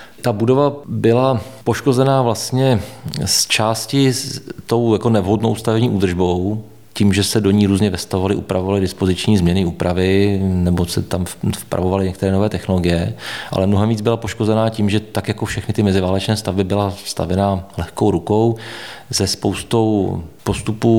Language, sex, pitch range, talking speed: Czech, male, 95-105 Hz, 145 wpm